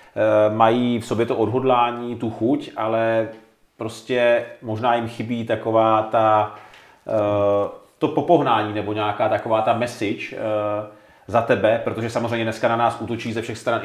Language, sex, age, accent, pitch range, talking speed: Czech, male, 30-49, native, 105-120 Hz, 140 wpm